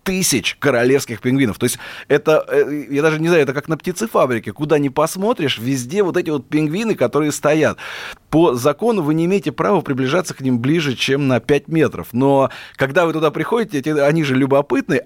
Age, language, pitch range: 20-39, Russian, 120-155 Hz